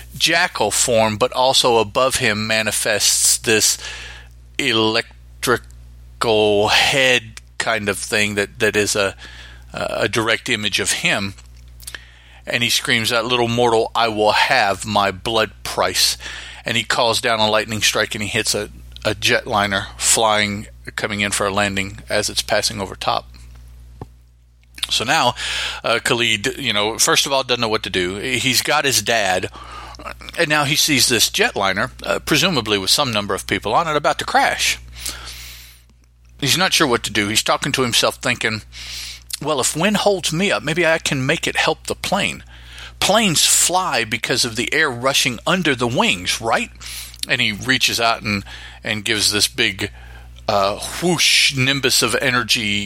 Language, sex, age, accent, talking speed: English, male, 40-59, American, 165 wpm